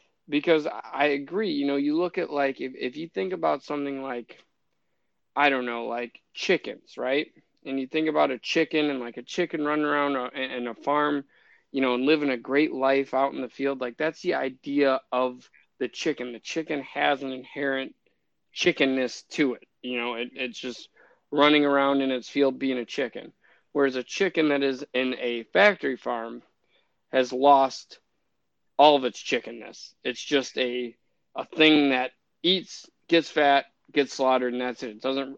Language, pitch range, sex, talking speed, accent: English, 125-145 Hz, male, 180 wpm, American